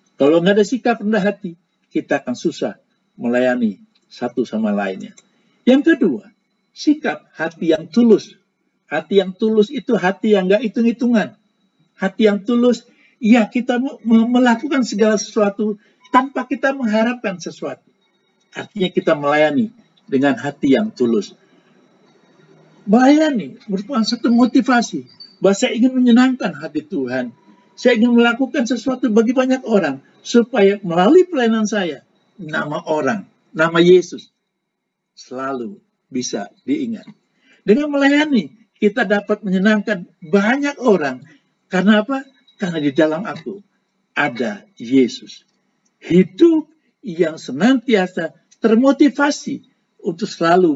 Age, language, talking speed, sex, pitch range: 50-69, Indonesian, 110 wpm, male, 180-240 Hz